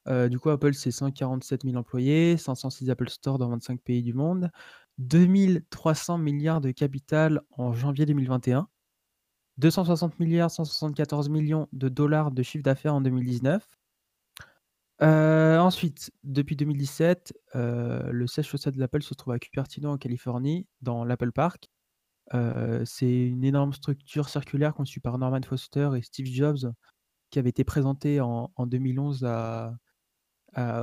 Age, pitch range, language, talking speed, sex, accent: 20-39, 125-150 Hz, French, 145 wpm, male, French